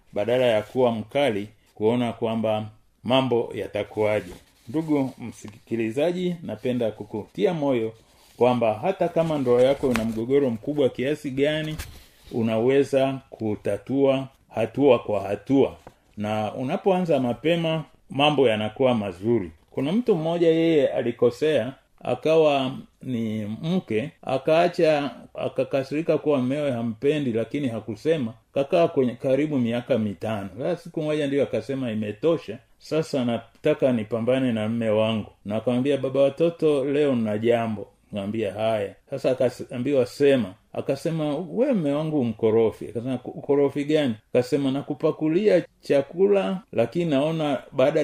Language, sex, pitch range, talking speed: Swahili, male, 110-150 Hz, 115 wpm